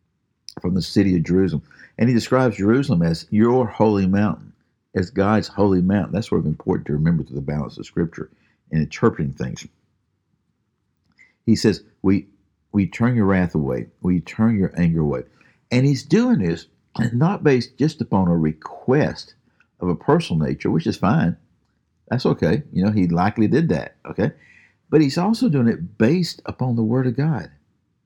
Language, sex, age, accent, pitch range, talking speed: English, male, 50-69, American, 90-125 Hz, 175 wpm